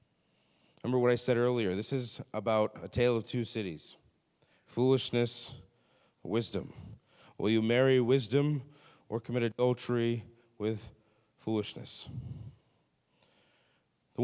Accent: American